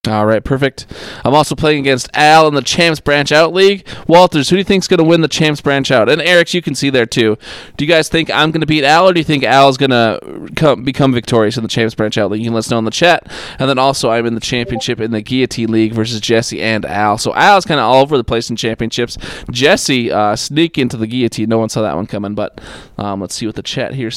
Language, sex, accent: English, male, American